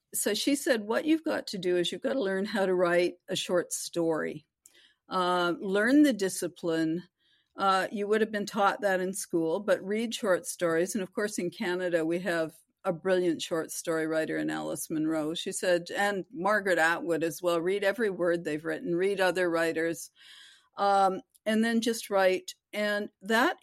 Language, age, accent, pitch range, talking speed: English, 50-69, American, 170-205 Hz, 185 wpm